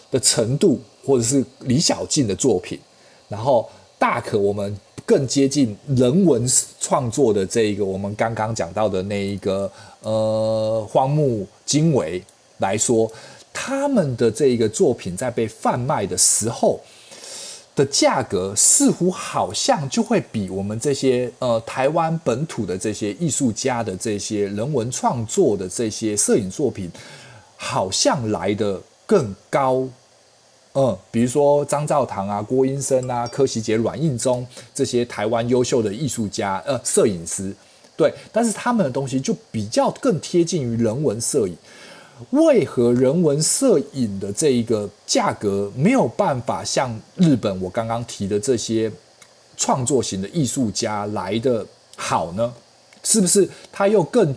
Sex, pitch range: male, 105-145 Hz